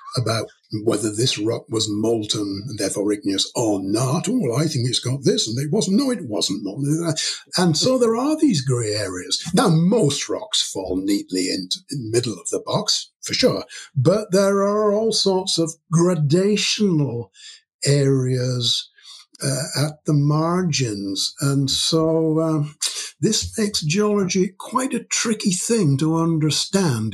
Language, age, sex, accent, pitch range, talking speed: English, 60-79, male, British, 135-205 Hz, 155 wpm